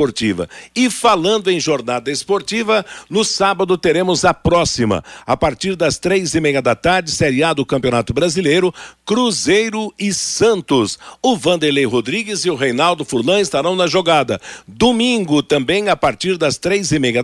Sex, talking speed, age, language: male, 155 wpm, 60-79, Portuguese